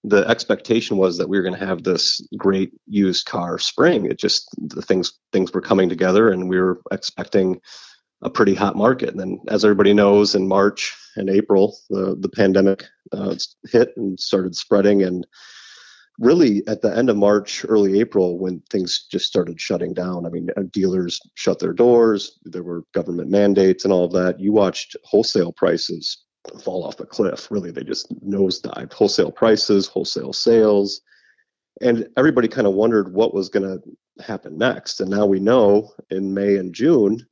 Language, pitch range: English, 95-105 Hz